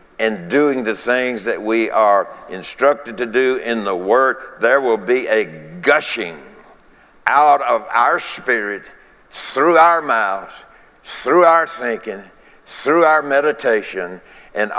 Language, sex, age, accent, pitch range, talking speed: English, male, 60-79, American, 125-170 Hz, 130 wpm